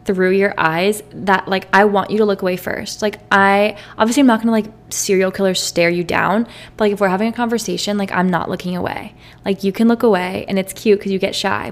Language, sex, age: English, female, 20-39